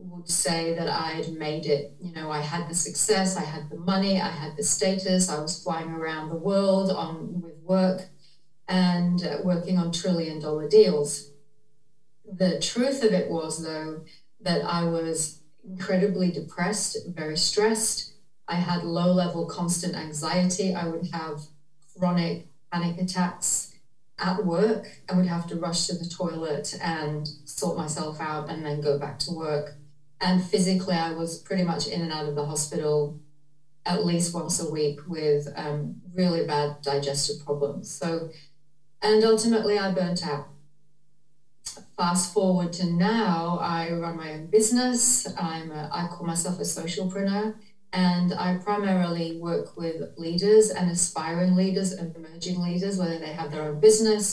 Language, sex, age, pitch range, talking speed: English, female, 40-59, 155-185 Hz, 160 wpm